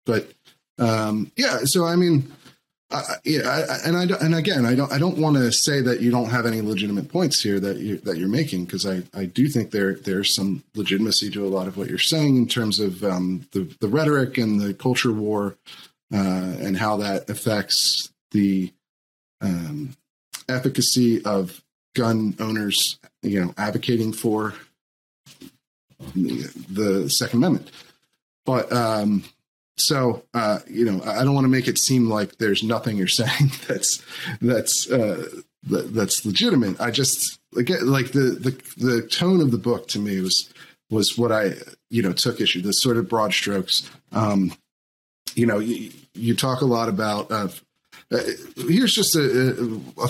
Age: 30-49